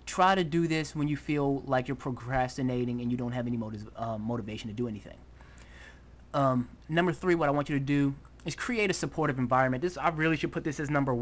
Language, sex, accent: English, male, American